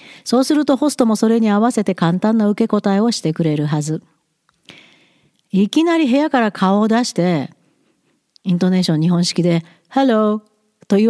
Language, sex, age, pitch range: Japanese, female, 40-59, 180-250 Hz